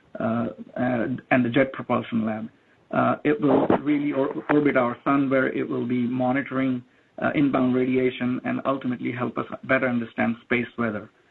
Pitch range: 125-145 Hz